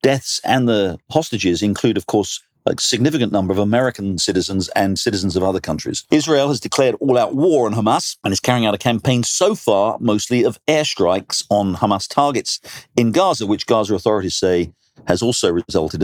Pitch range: 100-130 Hz